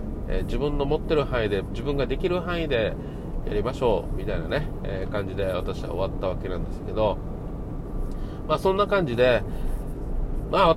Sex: male